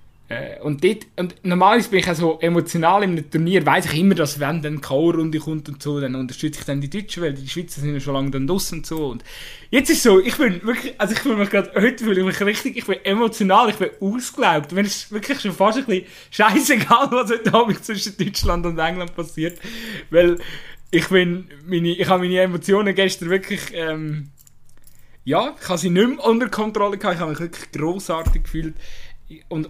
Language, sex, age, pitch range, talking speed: German, male, 20-39, 160-200 Hz, 215 wpm